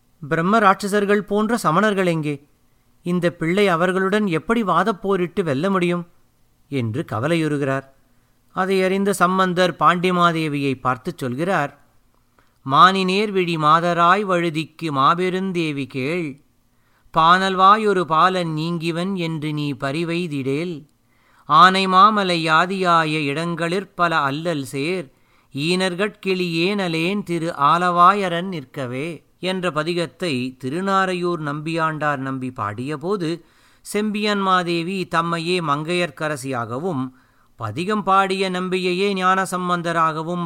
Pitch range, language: 145-185 Hz, Tamil